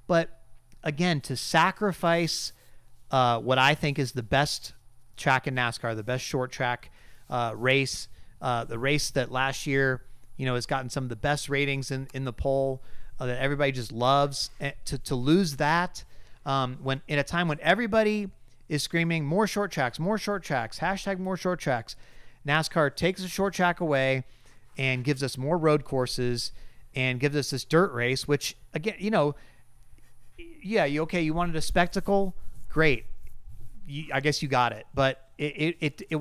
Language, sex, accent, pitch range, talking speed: English, male, American, 130-170 Hz, 180 wpm